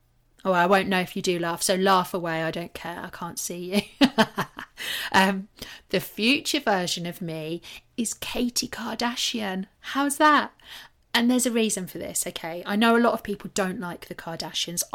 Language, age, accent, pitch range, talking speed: English, 30-49, British, 165-200 Hz, 185 wpm